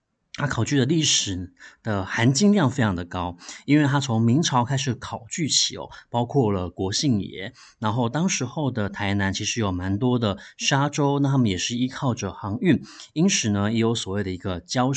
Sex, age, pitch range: male, 30-49, 105-145 Hz